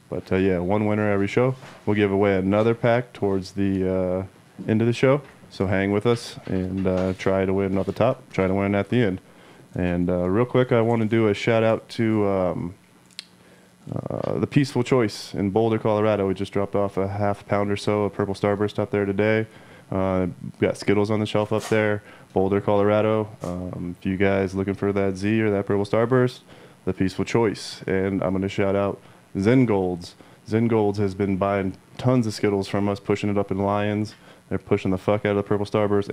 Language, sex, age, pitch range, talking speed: English, male, 20-39, 95-110 Hz, 210 wpm